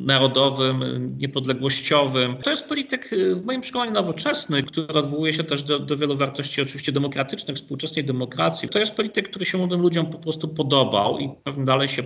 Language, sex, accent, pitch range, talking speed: Polish, male, native, 120-145 Hz, 170 wpm